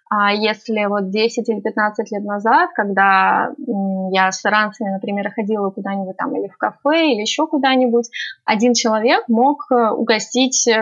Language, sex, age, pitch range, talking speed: Russian, female, 20-39, 200-240 Hz, 145 wpm